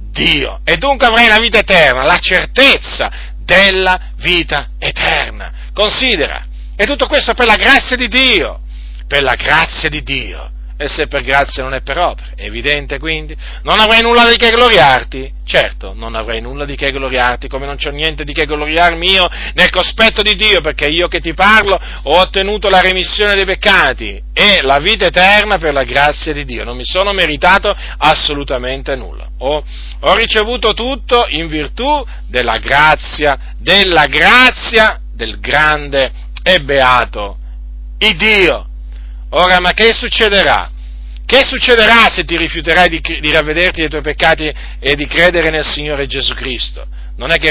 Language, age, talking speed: Italian, 40-59, 165 wpm